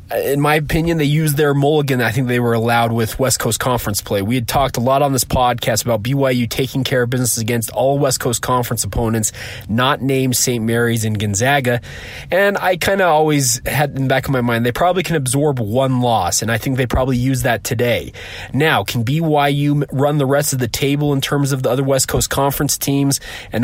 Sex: male